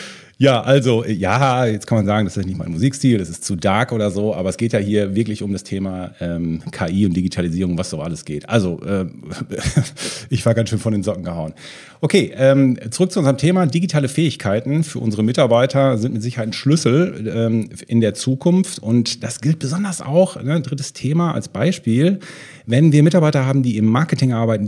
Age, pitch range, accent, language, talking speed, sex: 40-59, 110-155 Hz, German, German, 200 wpm, male